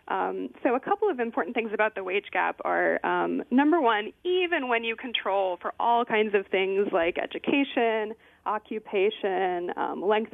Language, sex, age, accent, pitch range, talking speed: English, female, 20-39, American, 190-260 Hz, 170 wpm